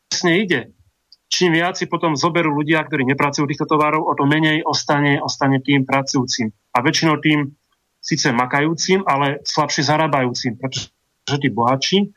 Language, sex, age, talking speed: Slovak, male, 30-49, 145 wpm